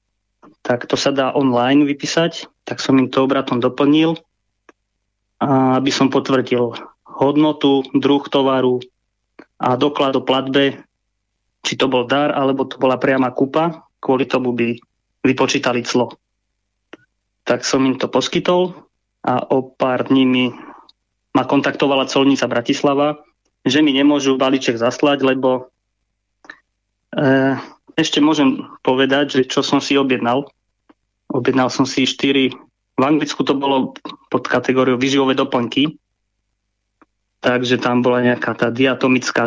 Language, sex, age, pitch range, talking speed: Slovak, male, 20-39, 120-140 Hz, 125 wpm